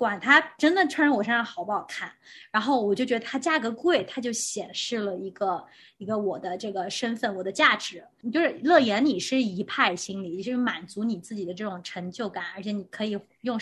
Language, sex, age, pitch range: Chinese, female, 20-39, 215-325 Hz